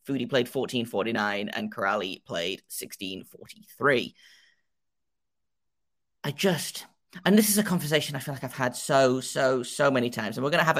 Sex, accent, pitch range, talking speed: male, British, 120-150 Hz, 155 wpm